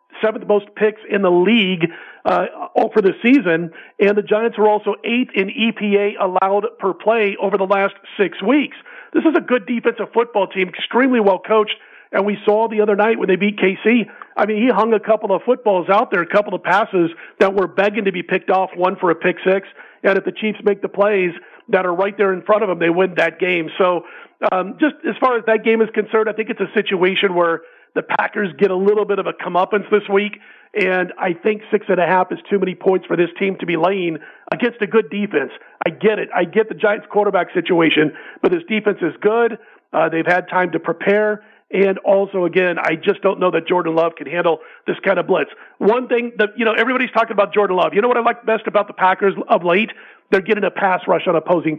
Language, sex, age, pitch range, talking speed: English, male, 40-59, 185-215 Hz, 235 wpm